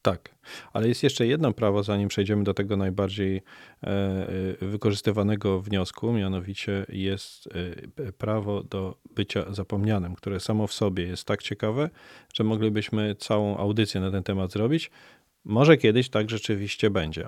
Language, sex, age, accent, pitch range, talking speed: Polish, male, 40-59, native, 100-120 Hz, 135 wpm